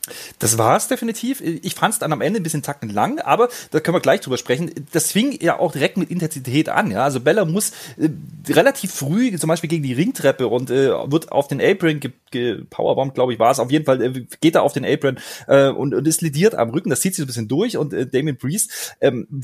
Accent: German